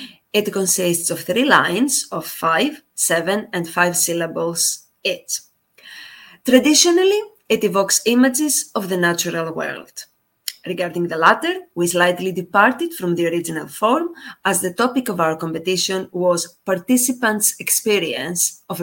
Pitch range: 180-255 Hz